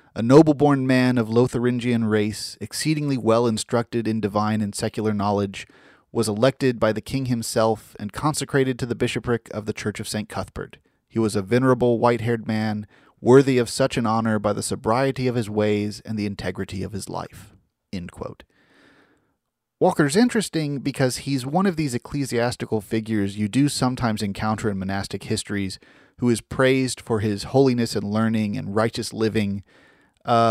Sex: male